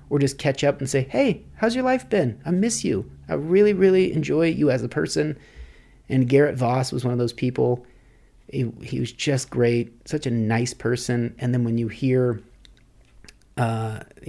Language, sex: English, male